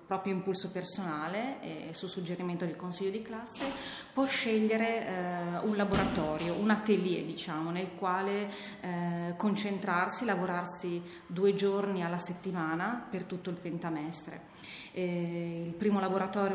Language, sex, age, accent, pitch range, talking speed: Italian, female, 30-49, native, 180-205 Hz, 125 wpm